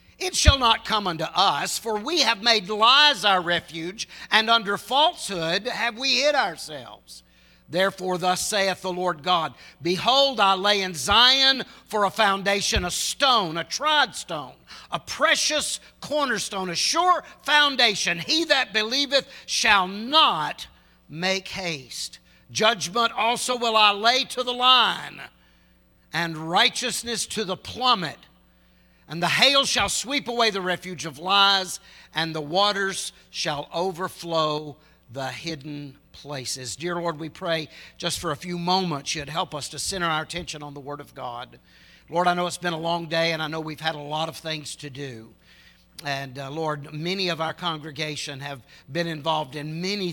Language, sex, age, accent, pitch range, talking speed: English, male, 60-79, American, 155-220 Hz, 160 wpm